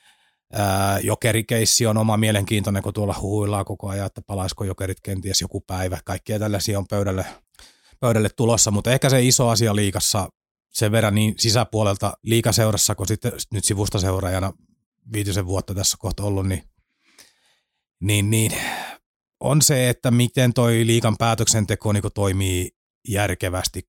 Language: Finnish